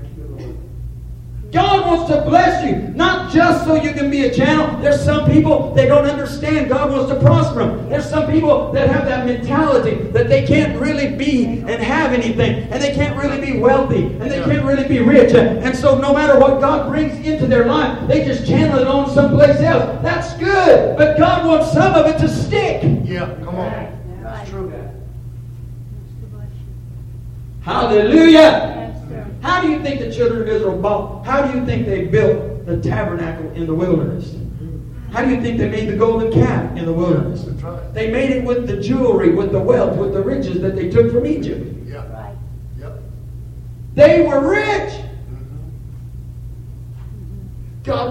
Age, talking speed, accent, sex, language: 50-69, 170 wpm, American, male, English